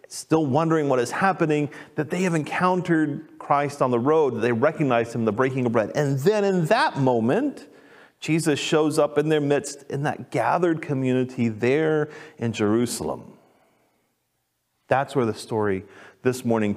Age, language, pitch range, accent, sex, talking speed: 40-59, English, 115-155 Hz, American, male, 155 wpm